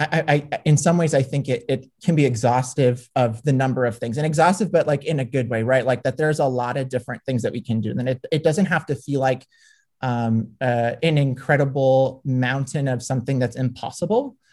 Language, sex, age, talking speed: English, male, 30-49, 230 wpm